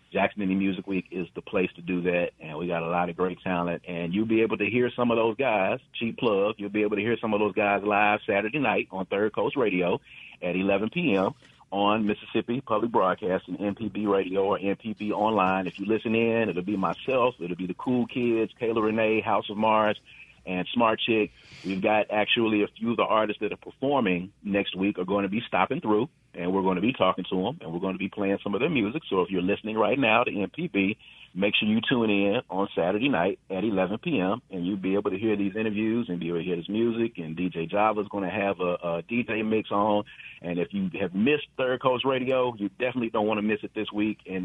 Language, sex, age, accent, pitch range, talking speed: English, male, 40-59, American, 95-110 Hz, 240 wpm